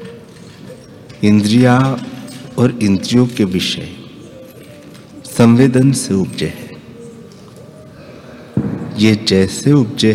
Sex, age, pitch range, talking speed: male, 60-79, 100-130 Hz, 70 wpm